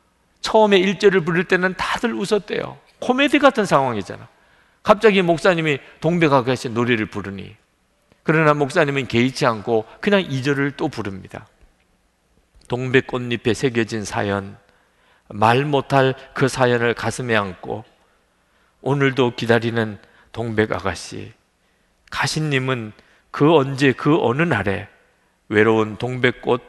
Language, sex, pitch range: Korean, male, 115-185 Hz